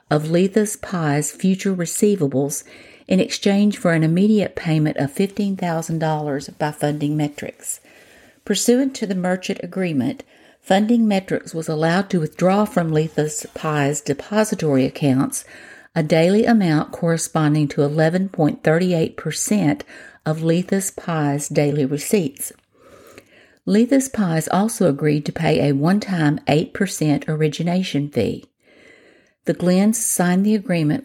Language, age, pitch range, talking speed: English, 50-69, 150-195 Hz, 115 wpm